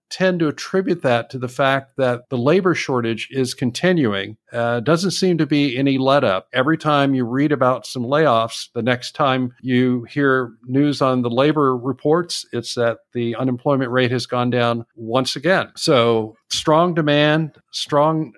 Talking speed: 170 wpm